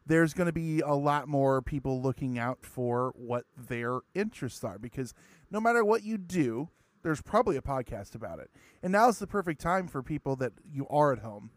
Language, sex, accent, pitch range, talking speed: English, male, American, 125-170 Hz, 205 wpm